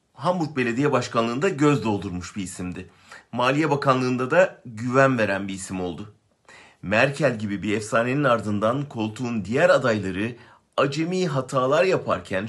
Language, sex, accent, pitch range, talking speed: German, male, Turkish, 105-140 Hz, 125 wpm